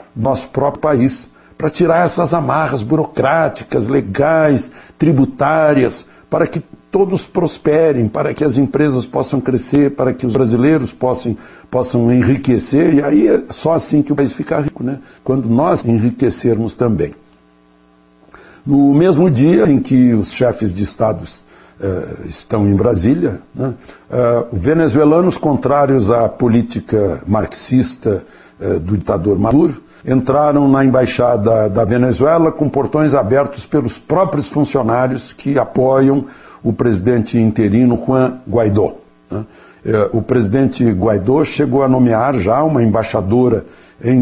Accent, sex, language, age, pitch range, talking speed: Brazilian, male, Portuguese, 60-79, 110-145 Hz, 125 wpm